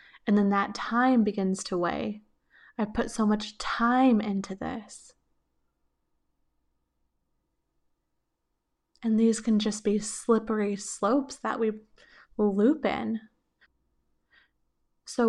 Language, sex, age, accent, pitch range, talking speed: English, female, 20-39, American, 195-235 Hz, 100 wpm